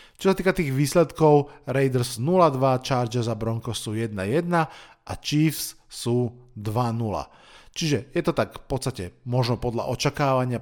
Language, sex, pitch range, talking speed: Slovak, male, 120-155 Hz, 140 wpm